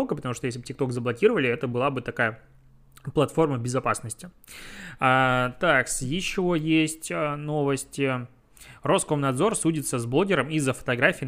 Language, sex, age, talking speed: Russian, male, 20-39, 120 wpm